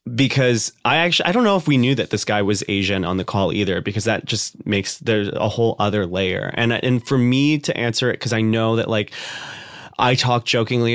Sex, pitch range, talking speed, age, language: male, 105-125 Hz, 230 wpm, 30-49, English